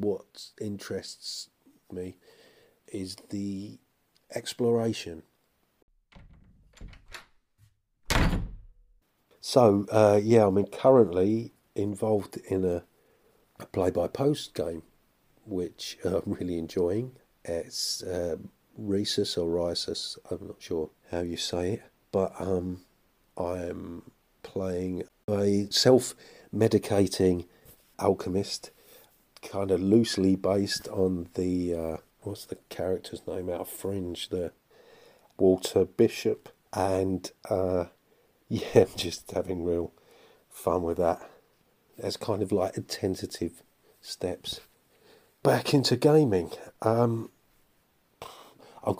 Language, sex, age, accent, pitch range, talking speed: English, male, 50-69, British, 90-105 Hz, 95 wpm